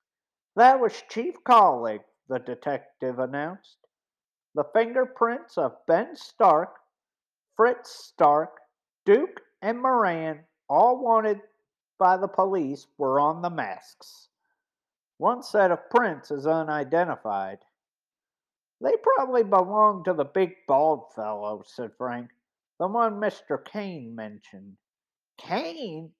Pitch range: 155-235 Hz